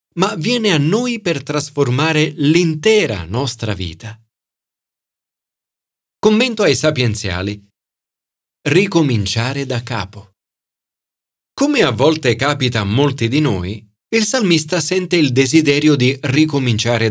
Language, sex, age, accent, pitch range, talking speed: Italian, male, 40-59, native, 105-170 Hz, 105 wpm